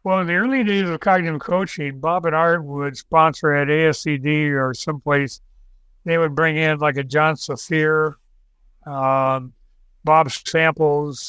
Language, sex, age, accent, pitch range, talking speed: English, male, 60-79, American, 145-170 Hz, 145 wpm